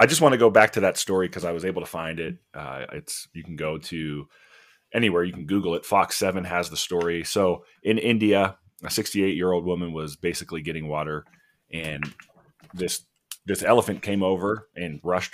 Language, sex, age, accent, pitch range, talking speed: English, male, 30-49, American, 75-100 Hz, 205 wpm